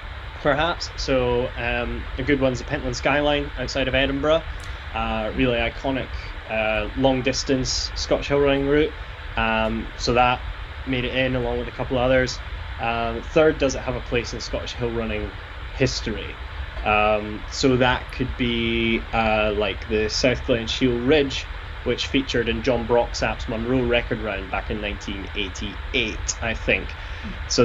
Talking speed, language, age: 155 wpm, English, 10-29